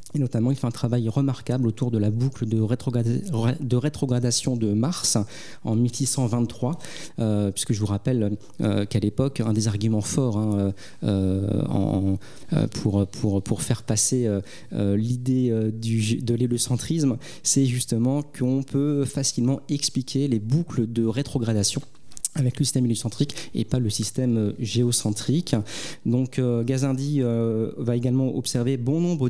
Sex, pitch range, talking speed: male, 110-135 Hz, 135 wpm